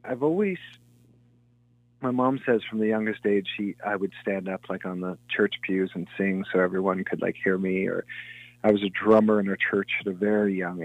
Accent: American